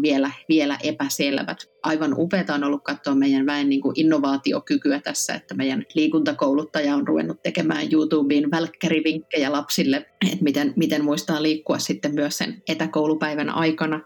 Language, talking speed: Finnish, 140 wpm